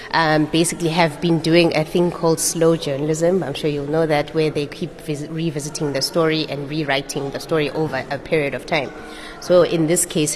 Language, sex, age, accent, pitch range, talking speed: English, female, 30-49, South African, 140-160 Hz, 195 wpm